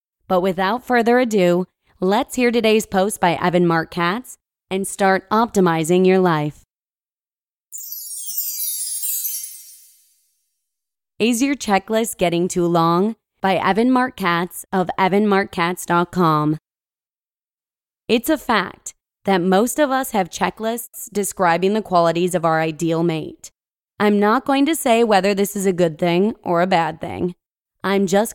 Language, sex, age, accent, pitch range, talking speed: English, female, 20-39, American, 175-225 Hz, 130 wpm